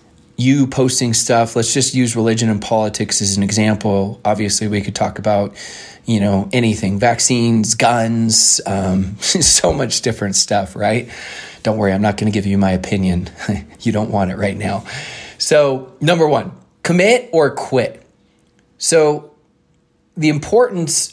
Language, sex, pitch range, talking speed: English, male, 110-140 Hz, 150 wpm